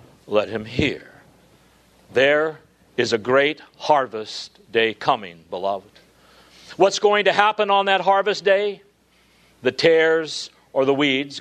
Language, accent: English, American